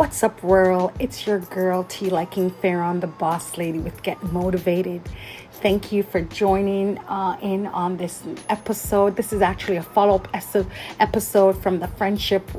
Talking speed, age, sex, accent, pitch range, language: 155 wpm, 30-49, female, American, 180-205 Hz, English